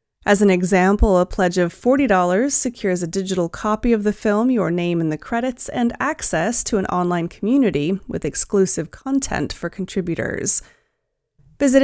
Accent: American